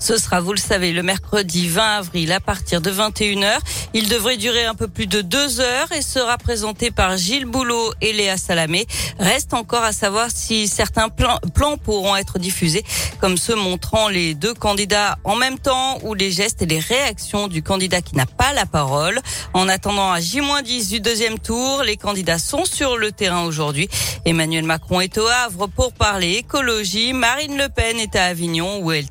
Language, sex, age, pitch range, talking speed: French, female, 40-59, 185-245 Hz, 195 wpm